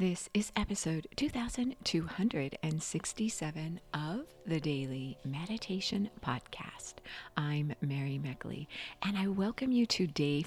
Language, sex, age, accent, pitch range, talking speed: English, female, 40-59, American, 140-200 Hz, 105 wpm